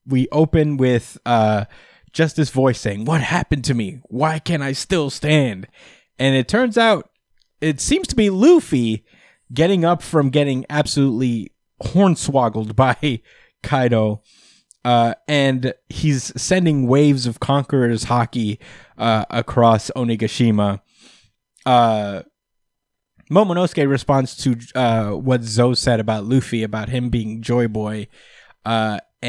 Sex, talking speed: male, 125 wpm